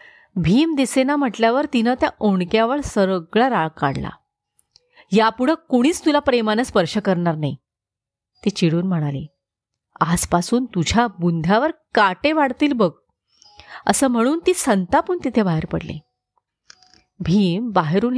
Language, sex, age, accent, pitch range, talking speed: Marathi, female, 30-49, native, 185-275 Hz, 80 wpm